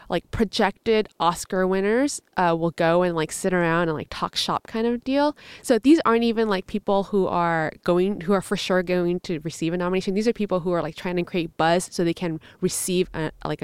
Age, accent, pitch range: 20-39, American, 175-215 Hz